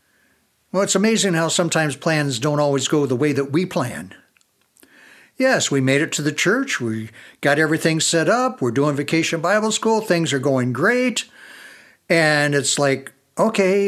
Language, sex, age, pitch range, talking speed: English, male, 60-79, 140-185 Hz, 170 wpm